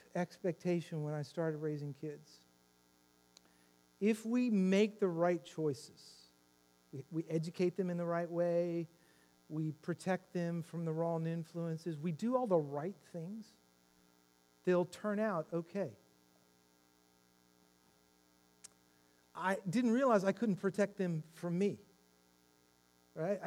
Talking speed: 120 wpm